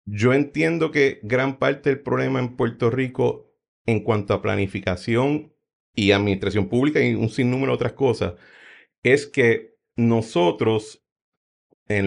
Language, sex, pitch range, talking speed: Spanish, male, 105-140 Hz, 135 wpm